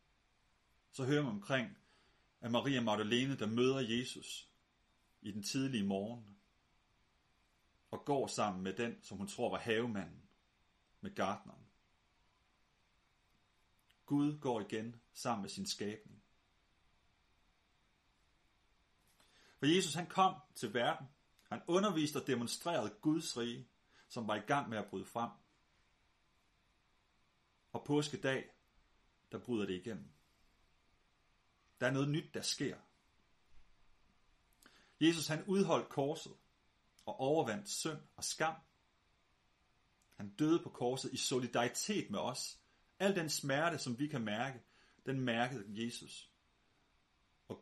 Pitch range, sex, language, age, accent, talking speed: 105-140 Hz, male, Danish, 30-49, native, 120 wpm